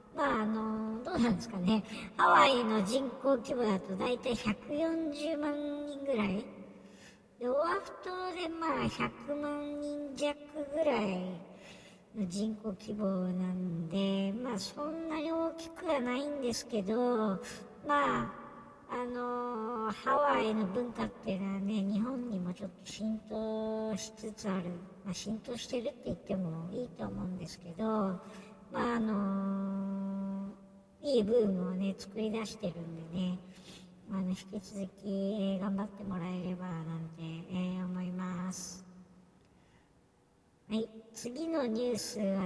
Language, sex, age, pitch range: Japanese, male, 60-79, 190-250 Hz